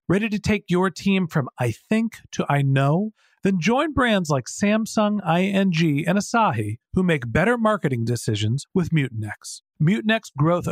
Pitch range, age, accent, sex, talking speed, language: 120-170 Hz, 40-59, American, male, 155 wpm, English